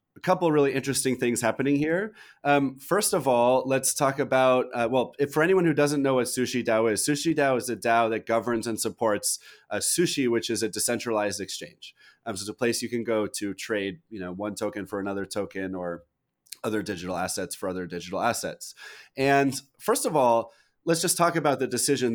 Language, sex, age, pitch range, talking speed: English, male, 30-49, 110-140 Hz, 210 wpm